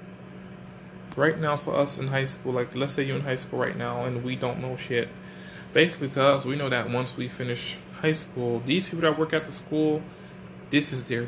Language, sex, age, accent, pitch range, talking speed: English, male, 20-39, American, 120-160 Hz, 225 wpm